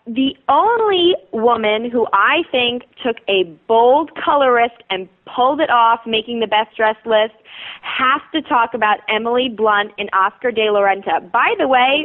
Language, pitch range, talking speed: English, 215-275 Hz, 165 wpm